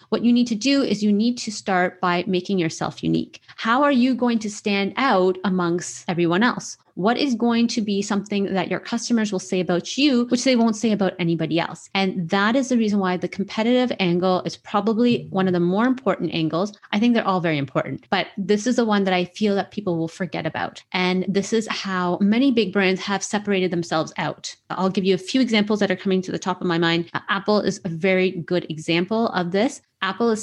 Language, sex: English, female